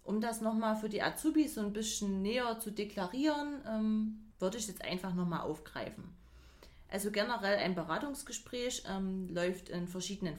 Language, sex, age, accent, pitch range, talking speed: German, female, 30-49, German, 190-235 Hz, 155 wpm